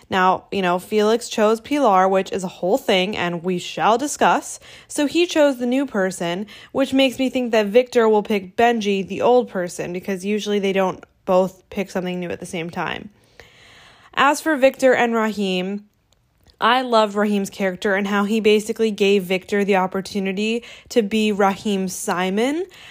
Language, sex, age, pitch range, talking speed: English, female, 20-39, 195-235 Hz, 175 wpm